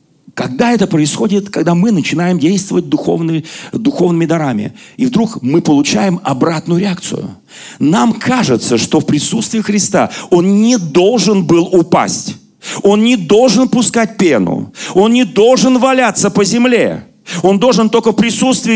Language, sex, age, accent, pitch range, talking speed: Russian, male, 40-59, native, 165-230 Hz, 140 wpm